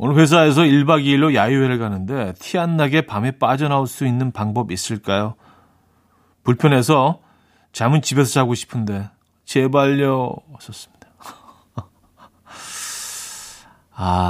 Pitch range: 100-150 Hz